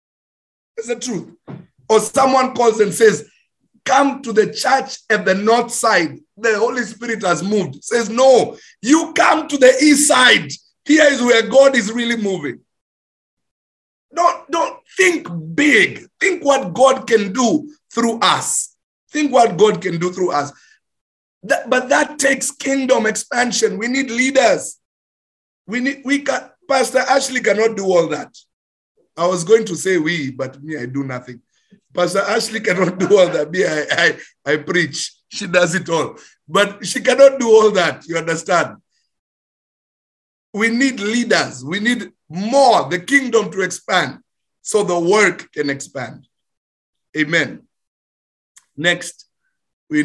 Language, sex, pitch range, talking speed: English, male, 160-260 Hz, 150 wpm